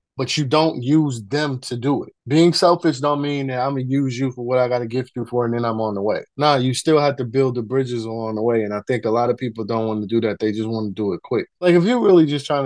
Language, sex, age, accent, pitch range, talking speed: English, male, 20-39, American, 125-165 Hz, 325 wpm